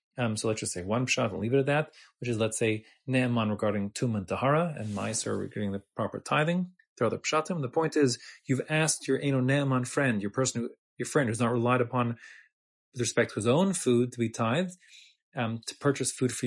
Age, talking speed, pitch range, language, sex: 30-49, 225 wpm, 115-140 Hz, English, male